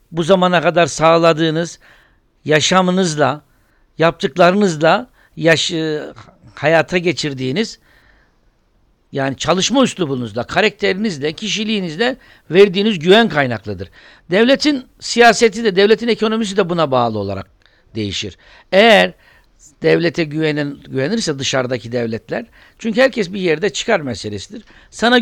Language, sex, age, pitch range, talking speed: Turkish, male, 60-79, 140-205 Hz, 95 wpm